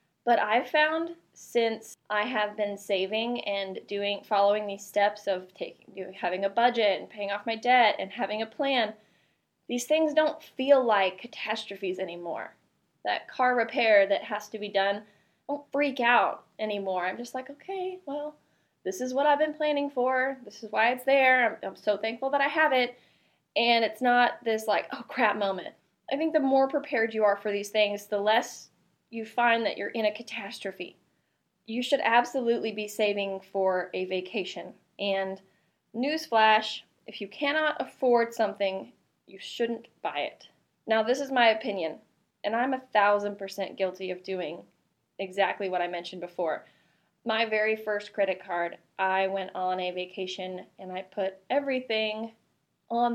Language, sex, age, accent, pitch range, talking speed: English, female, 20-39, American, 195-250 Hz, 170 wpm